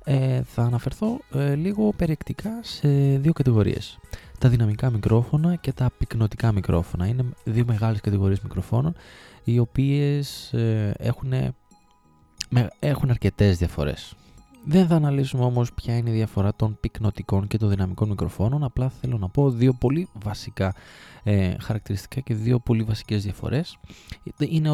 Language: Greek